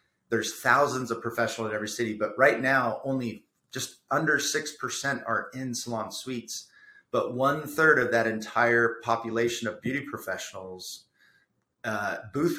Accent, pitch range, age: American, 110-125 Hz, 30-49